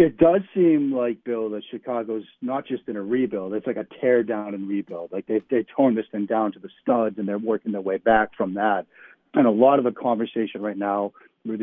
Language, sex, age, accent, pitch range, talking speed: English, male, 40-59, American, 105-130 Hz, 235 wpm